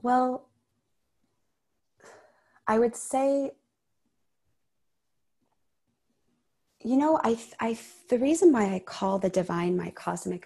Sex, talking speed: female, 100 wpm